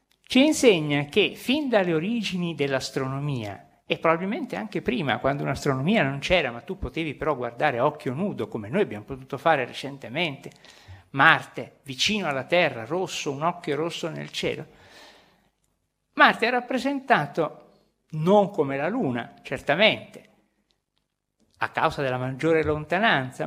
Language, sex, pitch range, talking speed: Italian, male, 140-200 Hz, 135 wpm